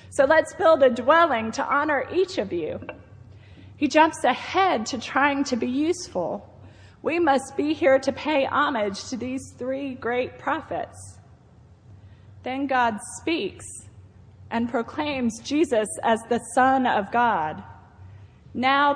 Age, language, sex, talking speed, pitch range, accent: 30-49, English, female, 135 wpm, 220-285 Hz, American